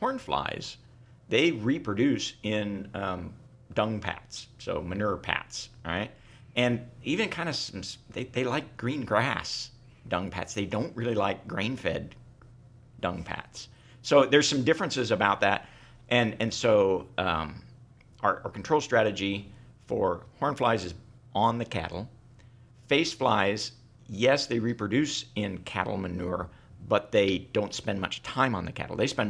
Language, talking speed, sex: English, 145 wpm, male